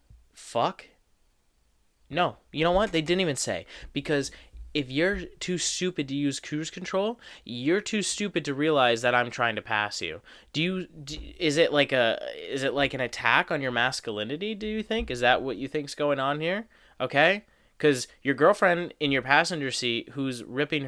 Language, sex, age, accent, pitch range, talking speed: English, male, 20-39, American, 100-150 Hz, 185 wpm